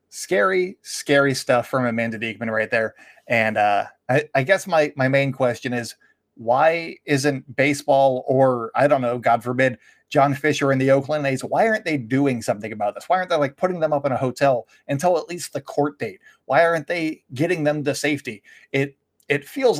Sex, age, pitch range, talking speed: male, 20-39, 130-165 Hz, 205 wpm